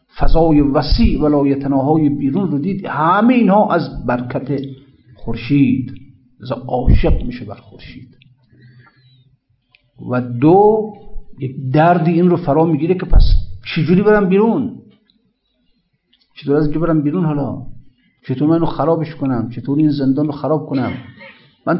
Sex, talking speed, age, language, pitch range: male, 130 wpm, 50-69, Persian, 130-170 Hz